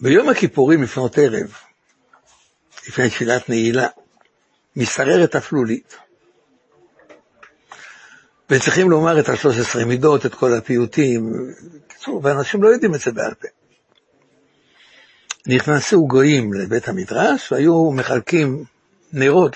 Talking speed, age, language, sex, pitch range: 100 wpm, 60-79, Hebrew, male, 125-190 Hz